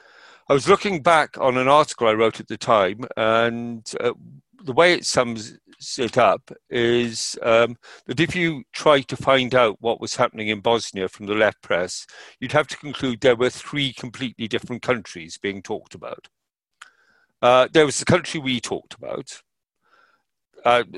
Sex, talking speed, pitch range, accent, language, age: male, 170 wpm, 110-140 Hz, British, English, 50-69